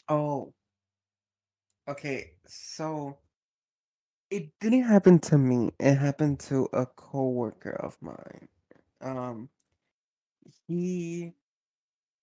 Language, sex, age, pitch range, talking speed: English, male, 20-39, 130-160 Hz, 85 wpm